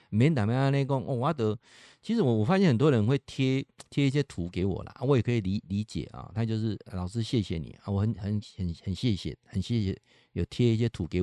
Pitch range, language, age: 115-175 Hz, Chinese, 50-69